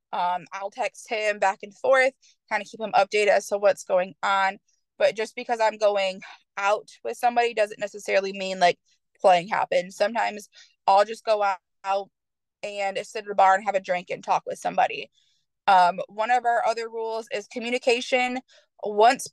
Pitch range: 195-240 Hz